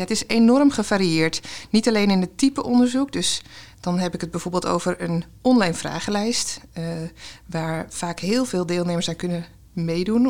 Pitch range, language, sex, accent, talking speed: 180-230 Hz, Dutch, female, Dutch, 170 wpm